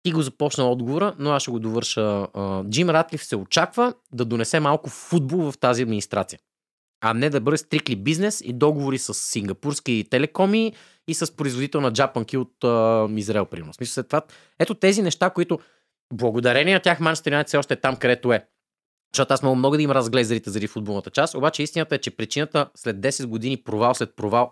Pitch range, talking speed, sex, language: 115-155 Hz, 195 wpm, male, Bulgarian